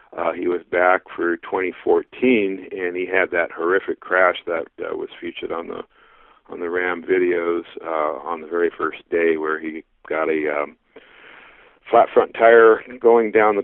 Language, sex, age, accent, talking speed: English, male, 50-69, American, 170 wpm